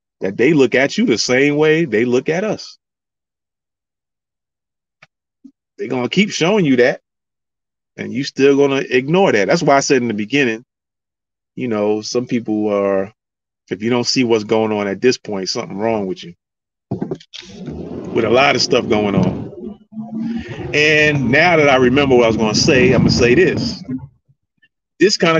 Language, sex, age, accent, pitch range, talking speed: English, male, 30-49, American, 120-180 Hz, 170 wpm